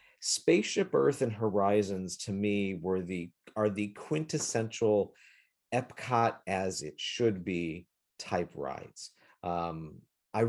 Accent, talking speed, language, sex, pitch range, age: American, 115 wpm, English, male, 100-140 Hz, 40-59